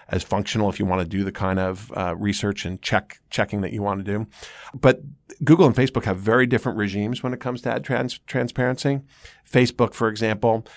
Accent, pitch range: American, 100-120 Hz